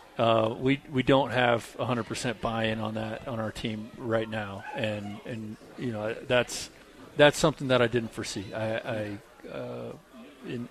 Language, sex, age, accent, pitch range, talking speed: English, male, 40-59, American, 110-125 Hz, 180 wpm